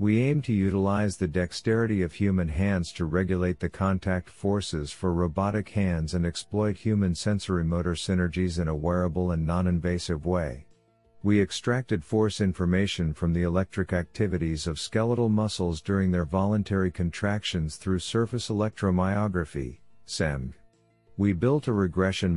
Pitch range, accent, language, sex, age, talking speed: 85-105 Hz, American, English, male, 50-69, 140 wpm